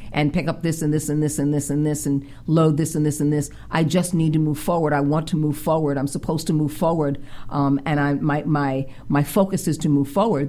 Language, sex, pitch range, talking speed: English, female, 140-170 Hz, 265 wpm